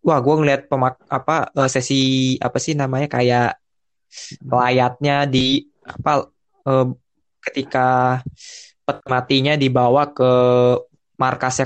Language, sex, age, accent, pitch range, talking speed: Indonesian, male, 20-39, native, 130-150 Hz, 105 wpm